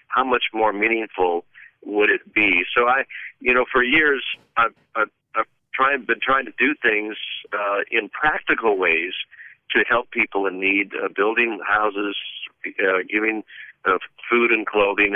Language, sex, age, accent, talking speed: English, male, 50-69, American, 155 wpm